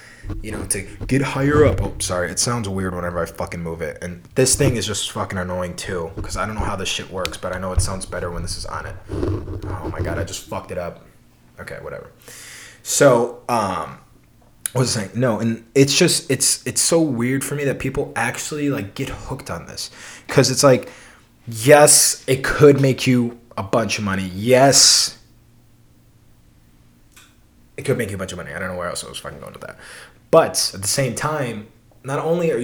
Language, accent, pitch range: English, American, 100-140 Hz